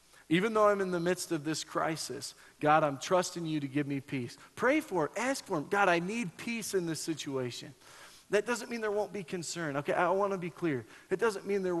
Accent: American